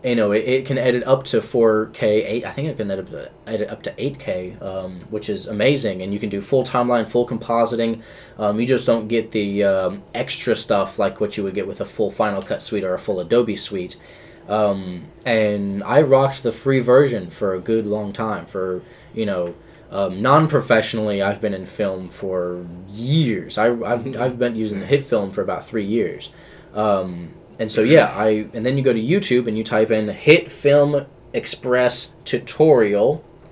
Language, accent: English, American